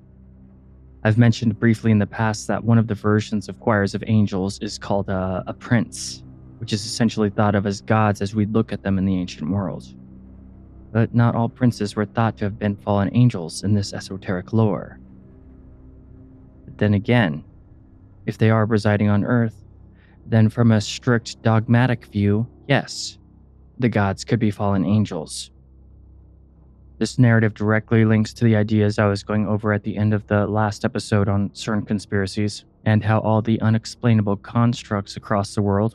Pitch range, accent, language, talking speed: 95-110 Hz, American, English, 170 wpm